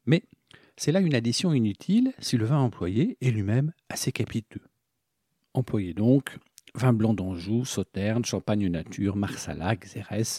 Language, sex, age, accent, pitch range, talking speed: French, male, 50-69, French, 110-145 Hz, 140 wpm